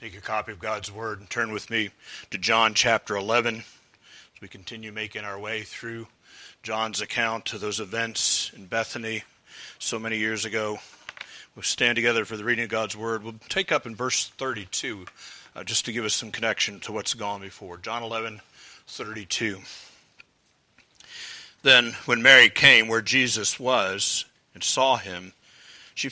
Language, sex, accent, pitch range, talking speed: English, male, American, 110-130 Hz, 165 wpm